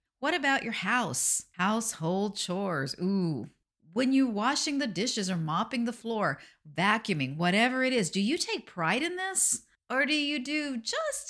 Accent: American